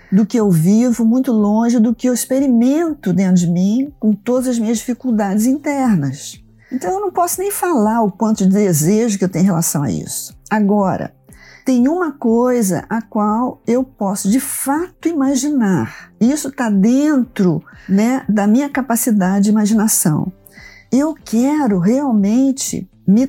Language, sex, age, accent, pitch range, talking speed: Portuguese, female, 50-69, Brazilian, 190-250 Hz, 155 wpm